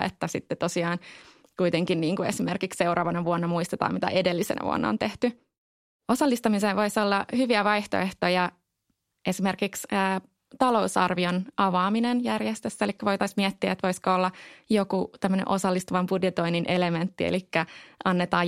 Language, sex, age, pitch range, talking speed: Finnish, female, 20-39, 175-205 Hz, 125 wpm